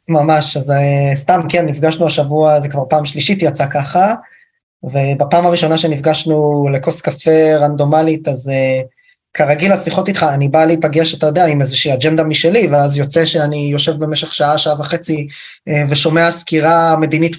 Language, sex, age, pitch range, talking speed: Hebrew, male, 20-39, 140-170 Hz, 155 wpm